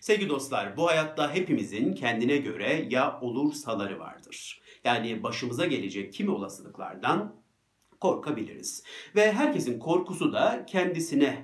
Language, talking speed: Turkish, 110 wpm